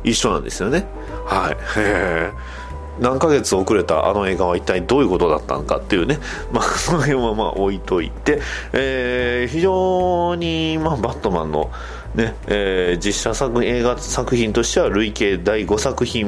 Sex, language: male, Japanese